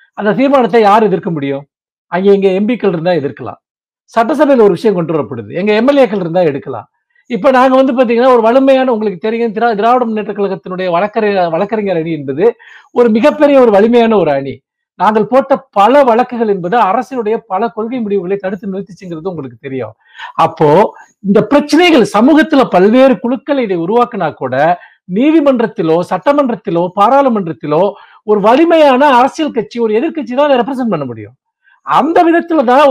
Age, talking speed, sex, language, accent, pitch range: 50-69, 120 wpm, male, Tamil, native, 195-270 Hz